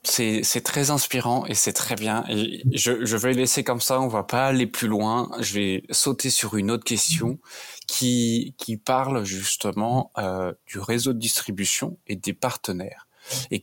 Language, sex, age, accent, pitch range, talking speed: French, male, 20-39, French, 100-120 Hz, 175 wpm